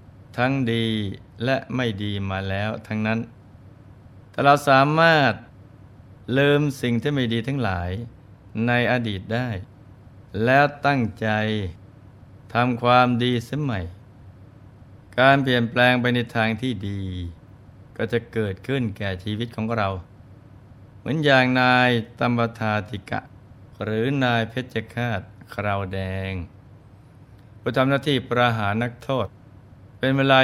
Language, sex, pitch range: Thai, male, 100-125 Hz